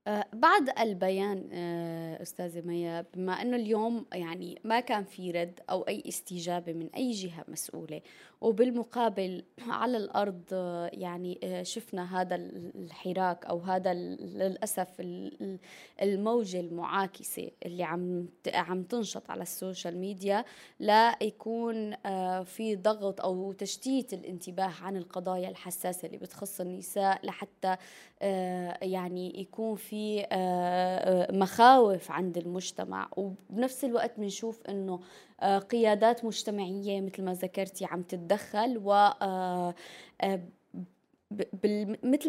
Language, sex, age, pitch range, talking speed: Arabic, female, 20-39, 180-215 Hz, 100 wpm